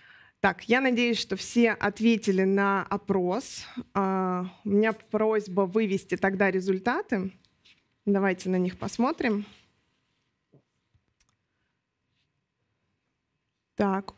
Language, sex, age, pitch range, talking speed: Russian, female, 20-39, 195-220 Hz, 80 wpm